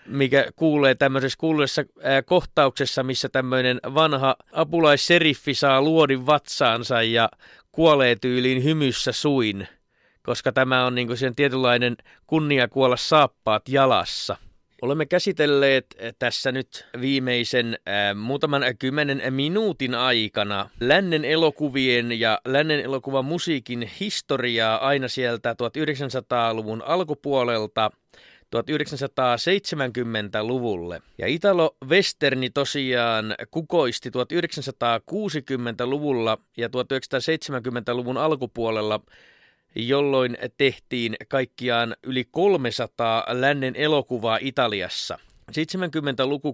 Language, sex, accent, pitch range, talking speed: Finnish, male, native, 120-145 Hz, 90 wpm